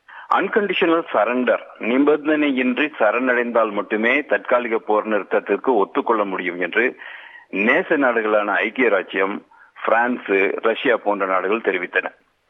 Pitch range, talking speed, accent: 105-145 Hz, 95 wpm, native